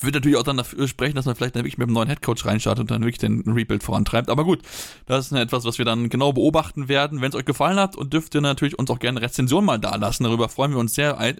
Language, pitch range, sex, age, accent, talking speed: German, 120-140 Hz, male, 20-39, German, 290 wpm